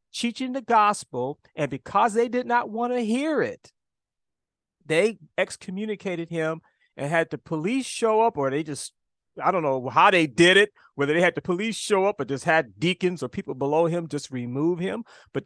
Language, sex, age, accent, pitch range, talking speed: English, male, 40-59, American, 150-205 Hz, 195 wpm